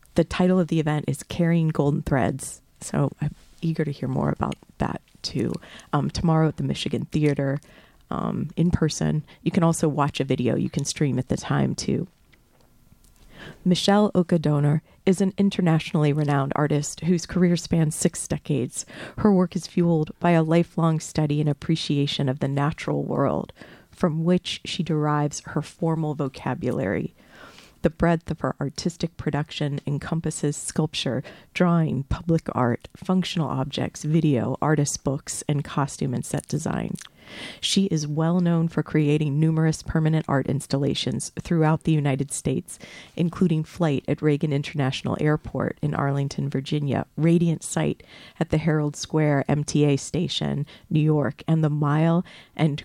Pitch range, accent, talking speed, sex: 145-165 Hz, American, 150 wpm, female